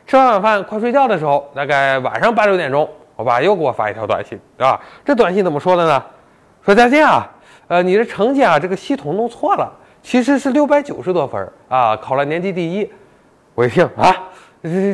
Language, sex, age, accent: Chinese, male, 20-39, native